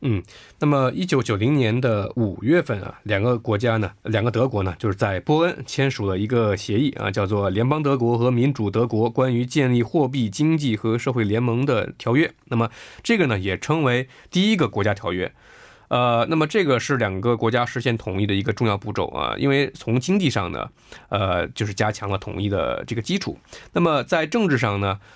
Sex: male